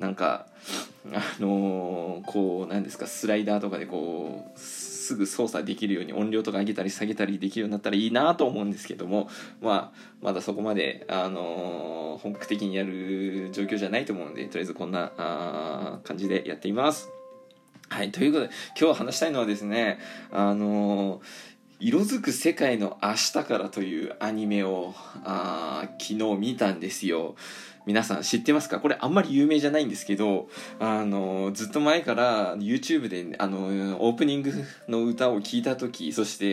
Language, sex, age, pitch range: Japanese, male, 20-39, 95-120 Hz